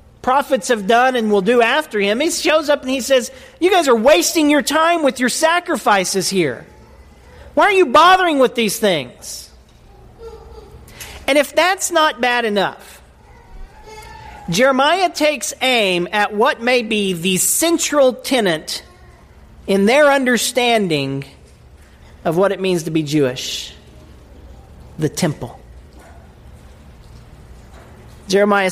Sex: male